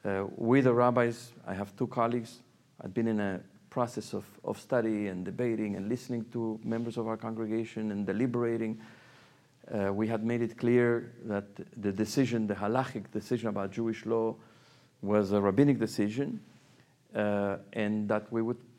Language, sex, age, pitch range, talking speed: English, male, 50-69, 110-135 Hz, 165 wpm